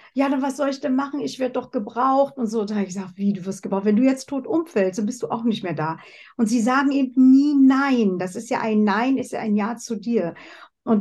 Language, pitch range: German, 205-265 Hz